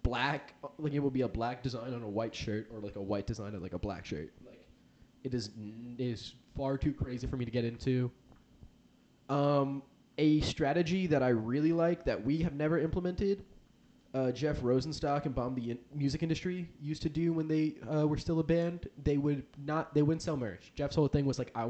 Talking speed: 215 wpm